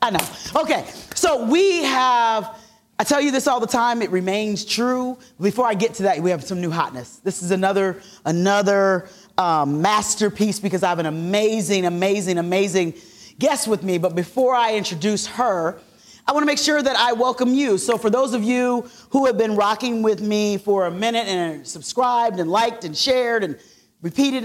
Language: English